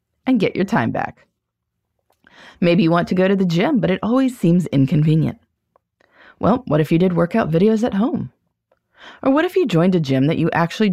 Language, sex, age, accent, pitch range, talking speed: English, female, 30-49, American, 155-235 Hz, 205 wpm